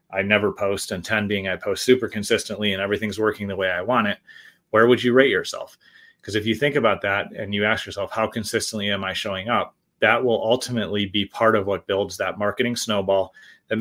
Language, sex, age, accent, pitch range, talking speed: English, male, 30-49, American, 100-120 Hz, 220 wpm